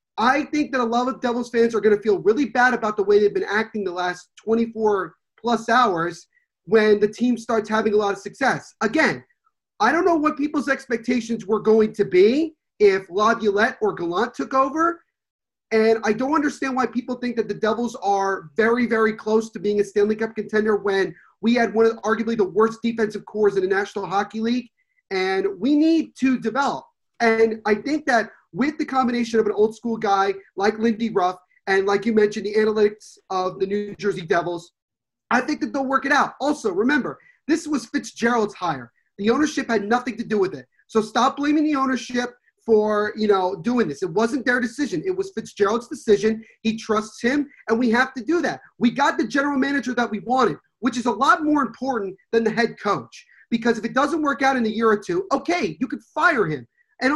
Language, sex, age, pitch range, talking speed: English, male, 30-49, 210-275 Hz, 210 wpm